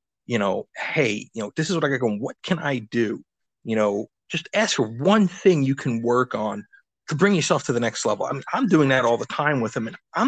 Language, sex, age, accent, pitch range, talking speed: English, male, 30-49, American, 120-150 Hz, 255 wpm